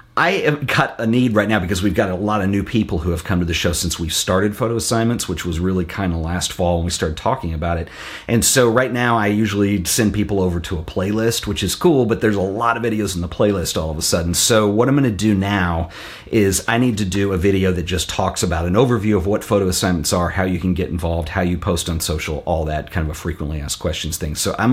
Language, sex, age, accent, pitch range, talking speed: English, male, 40-59, American, 85-105 Hz, 275 wpm